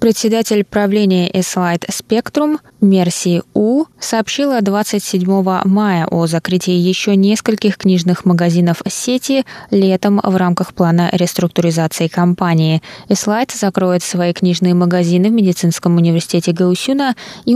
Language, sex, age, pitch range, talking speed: Russian, female, 20-39, 170-200 Hz, 110 wpm